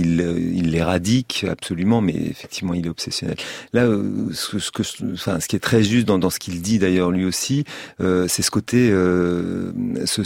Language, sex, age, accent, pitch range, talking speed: French, male, 40-59, French, 85-110 Hz, 200 wpm